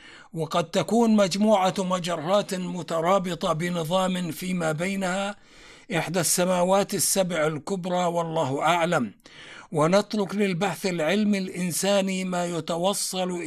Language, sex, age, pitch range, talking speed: Arabic, male, 60-79, 165-195 Hz, 90 wpm